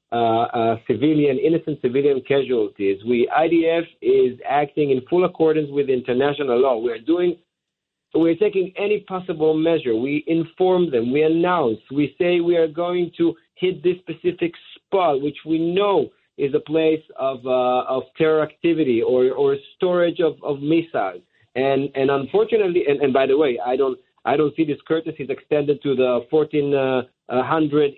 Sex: male